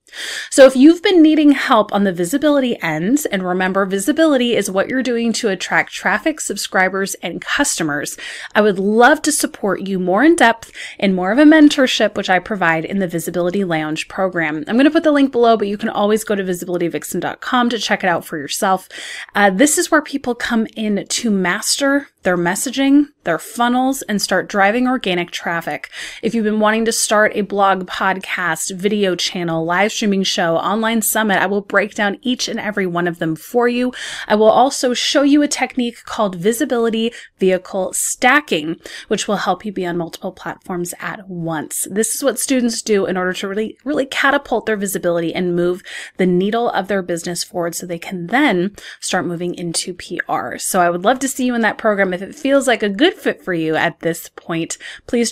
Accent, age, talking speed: American, 30-49, 200 wpm